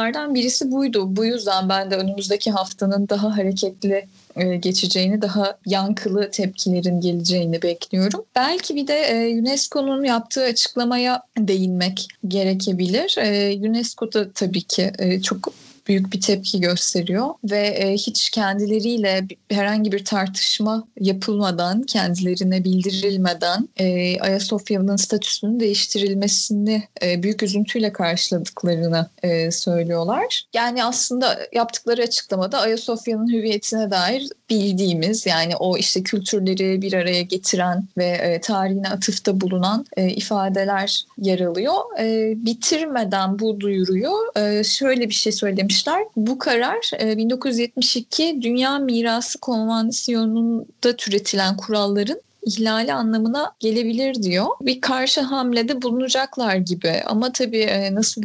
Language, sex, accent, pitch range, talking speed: Turkish, female, native, 190-230 Hz, 110 wpm